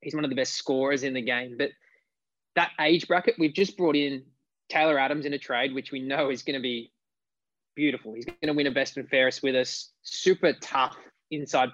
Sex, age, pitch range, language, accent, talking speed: male, 20-39, 130-150 Hz, English, Australian, 220 wpm